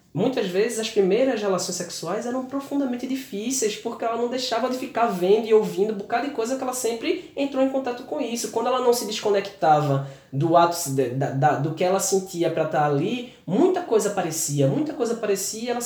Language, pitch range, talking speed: Portuguese, 180-235 Hz, 200 wpm